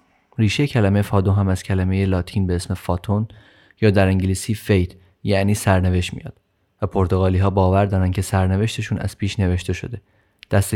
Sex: male